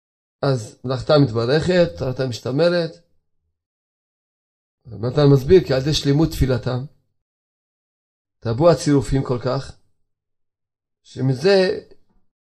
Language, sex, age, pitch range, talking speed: Hebrew, male, 30-49, 105-155 Hz, 80 wpm